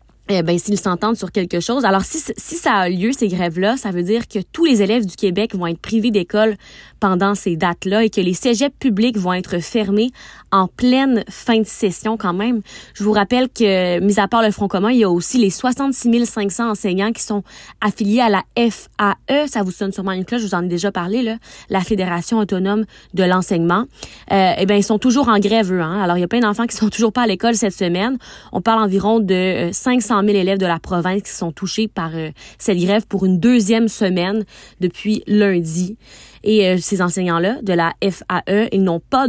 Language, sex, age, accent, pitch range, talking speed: French, female, 20-39, Canadian, 185-225 Hz, 220 wpm